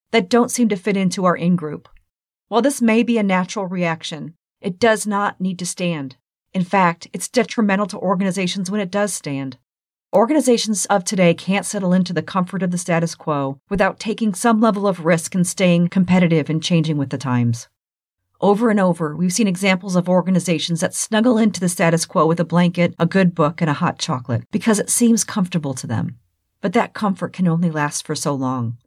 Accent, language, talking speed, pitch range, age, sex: American, English, 200 wpm, 155-200 Hz, 40-59, female